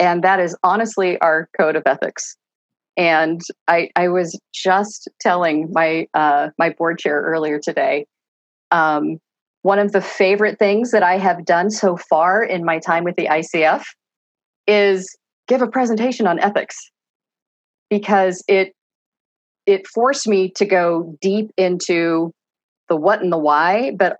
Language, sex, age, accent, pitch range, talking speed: English, female, 40-59, American, 165-205 Hz, 150 wpm